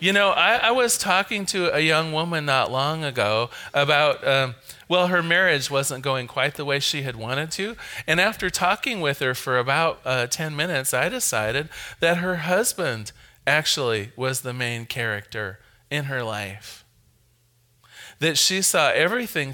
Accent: American